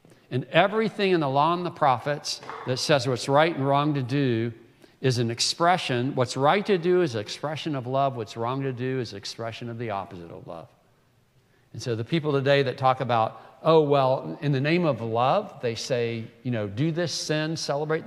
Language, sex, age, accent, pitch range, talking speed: English, male, 60-79, American, 120-165 Hz, 210 wpm